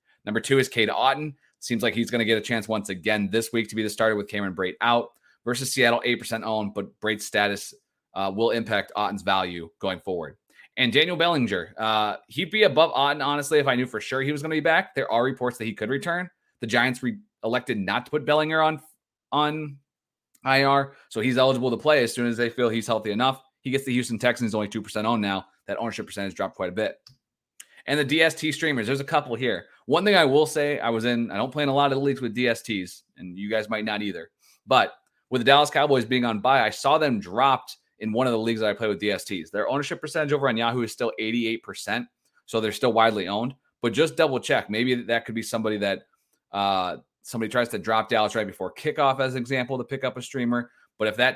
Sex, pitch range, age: male, 110-135 Hz, 20-39